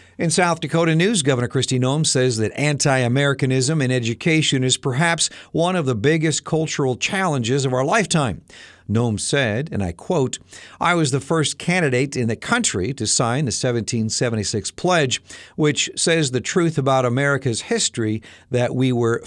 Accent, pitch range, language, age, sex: American, 105-150 Hz, Japanese, 50-69, male